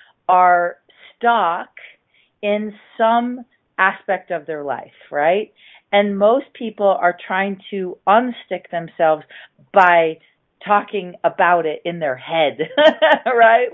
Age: 40-59